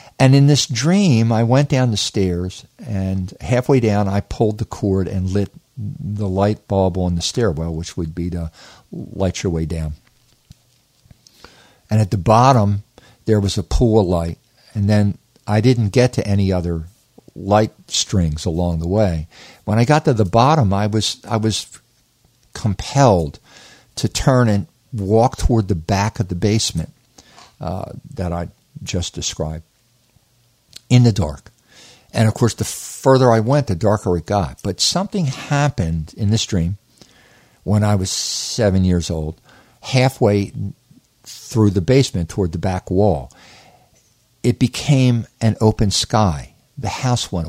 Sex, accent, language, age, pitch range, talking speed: male, American, English, 50-69, 95-120 Hz, 155 wpm